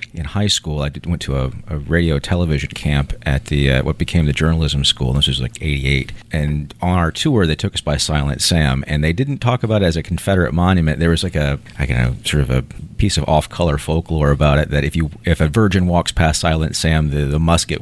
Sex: male